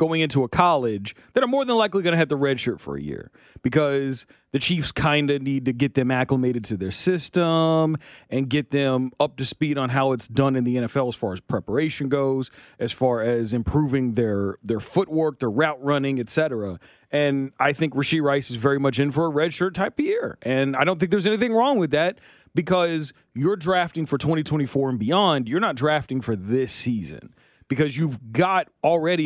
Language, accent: English, American